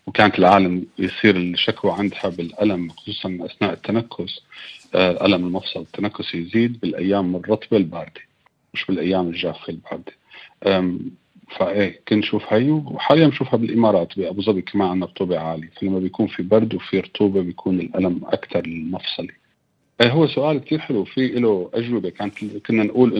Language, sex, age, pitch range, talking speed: Arabic, male, 40-59, 90-110 Hz, 145 wpm